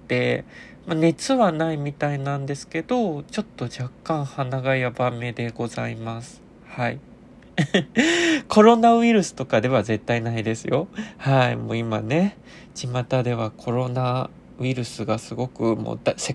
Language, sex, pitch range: Japanese, male, 120-165 Hz